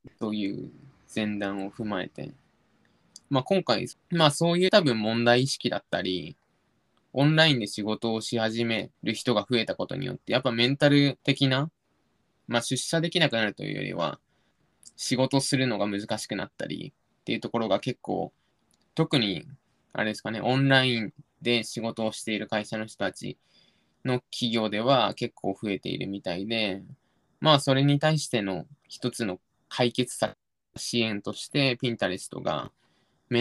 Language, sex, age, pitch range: Japanese, male, 20-39, 105-140 Hz